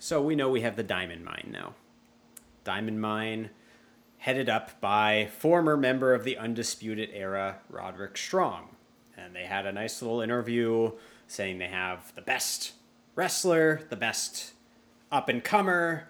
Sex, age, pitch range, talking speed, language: male, 30-49, 105-140 Hz, 140 wpm, English